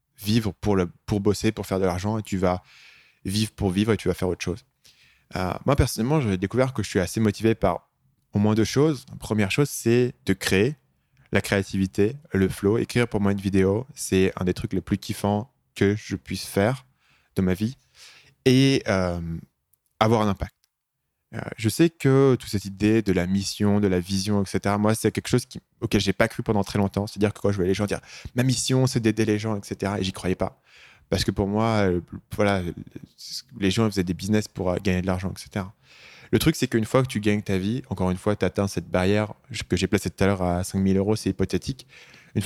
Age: 20-39